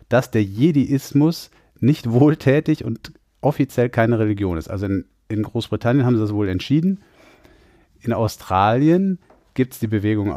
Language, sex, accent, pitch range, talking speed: German, male, German, 100-120 Hz, 145 wpm